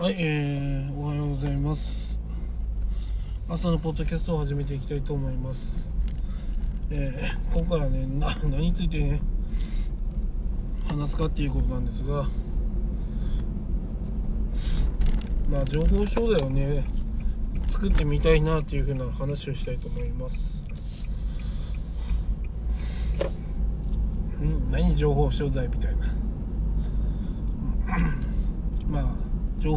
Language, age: Japanese, 20-39